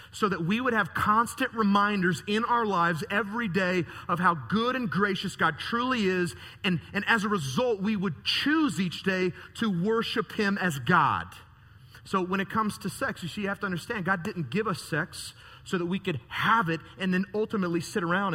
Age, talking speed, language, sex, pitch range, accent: 30-49, 205 wpm, English, male, 120-185 Hz, American